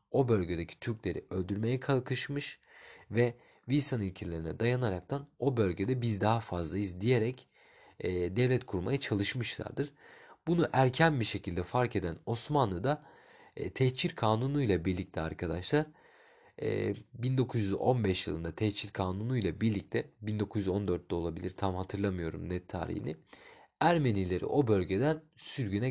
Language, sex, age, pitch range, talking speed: Turkish, male, 40-59, 95-125 Hz, 110 wpm